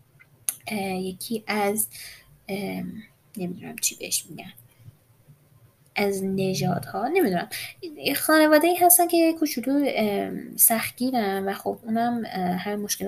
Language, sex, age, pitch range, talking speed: Persian, female, 10-29, 180-240 Hz, 100 wpm